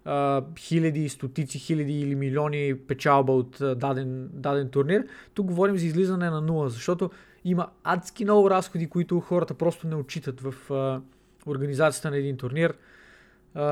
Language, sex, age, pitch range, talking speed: Bulgarian, male, 20-39, 145-185 Hz, 135 wpm